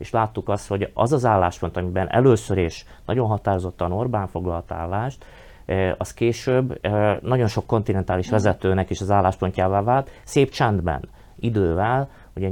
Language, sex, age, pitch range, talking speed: Hungarian, male, 30-49, 90-110 Hz, 140 wpm